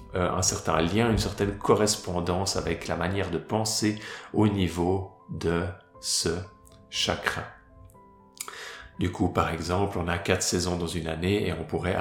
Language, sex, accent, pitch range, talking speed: French, male, French, 80-95 Hz, 150 wpm